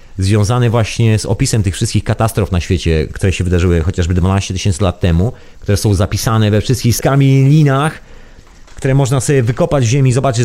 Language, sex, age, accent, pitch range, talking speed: Polish, male, 30-49, native, 100-135 Hz, 180 wpm